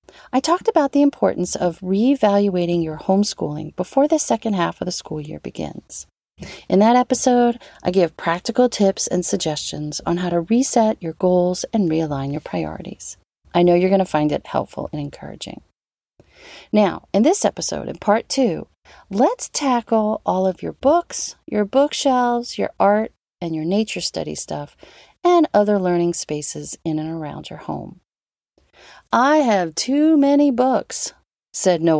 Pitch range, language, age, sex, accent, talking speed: 170-255 Hz, English, 40-59, female, American, 160 wpm